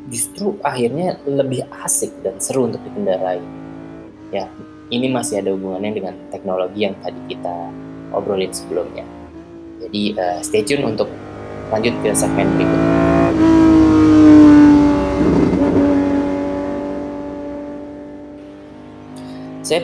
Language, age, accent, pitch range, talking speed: Indonesian, 20-39, native, 95-140 Hz, 90 wpm